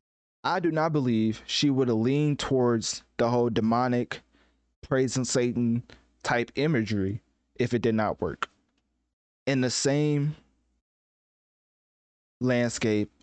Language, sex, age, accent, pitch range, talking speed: English, male, 20-39, American, 90-125 Hz, 115 wpm